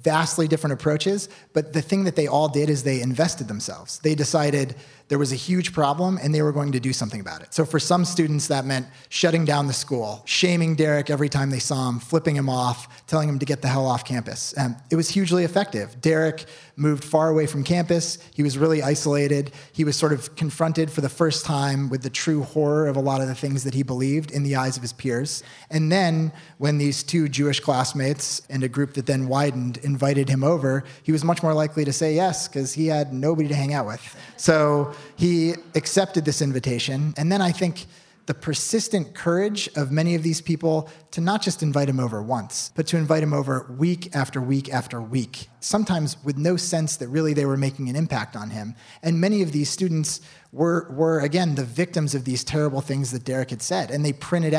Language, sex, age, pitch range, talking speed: English, male, 30-49, 130-160 Hz, 220 wpm